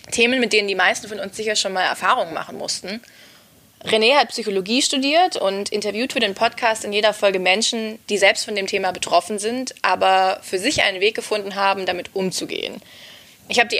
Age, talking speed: 20-39, 195 wpm